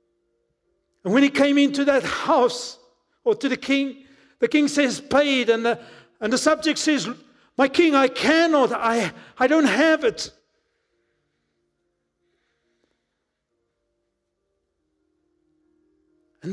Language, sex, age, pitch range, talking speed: English, male, 50-69, 230-300 Hz, 115 wpm